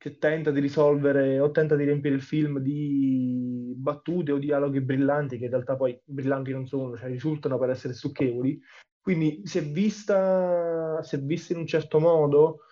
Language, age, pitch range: Italian, 20-39, 135-155 Hz